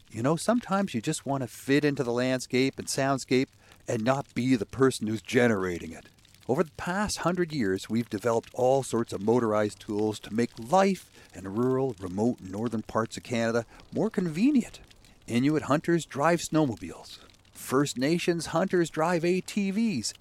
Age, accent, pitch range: 50-69, American, 110-160 Hz